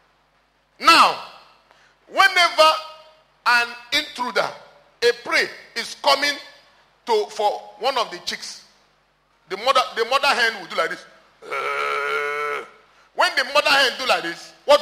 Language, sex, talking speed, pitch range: English, male, 125 wpm, 215-315 Hz